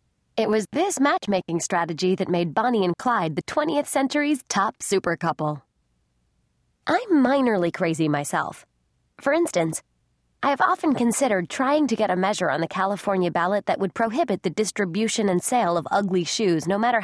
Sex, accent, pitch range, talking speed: female, American, 175-255 Hz, 160 wpm